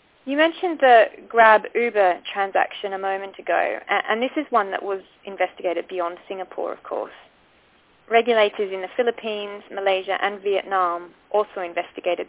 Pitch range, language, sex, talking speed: 185-230 Hz, English, female, 140 wpm